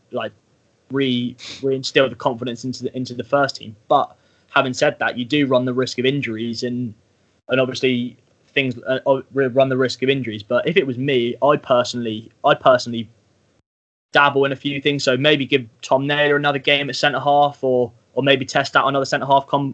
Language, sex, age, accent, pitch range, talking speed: English, male, 20-39, British, 120-135 Hz, 200 wpm